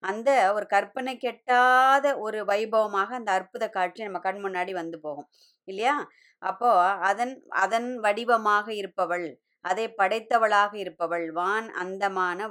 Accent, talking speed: native, 120 wpm